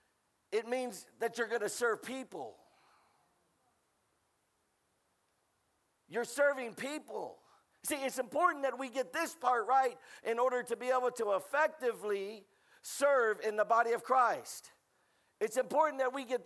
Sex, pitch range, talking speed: male, 240-300 Hz, 135 wpm